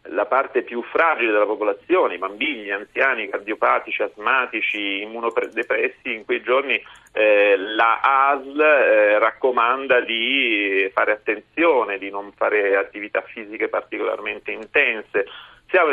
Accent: native